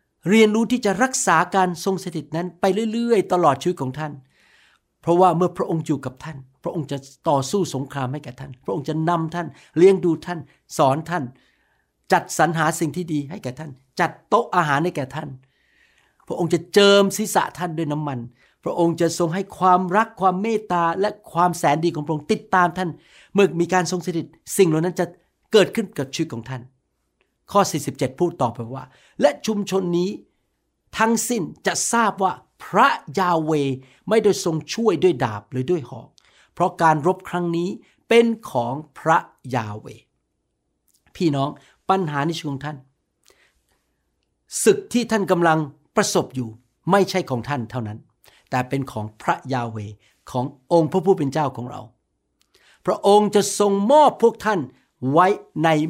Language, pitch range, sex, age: Thai, 135-185 Hz, male, 60-79